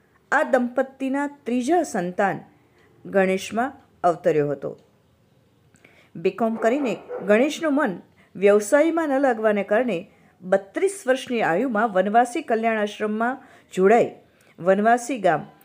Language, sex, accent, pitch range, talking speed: Hindi, female, native, 190-265 Hz, 100 wpm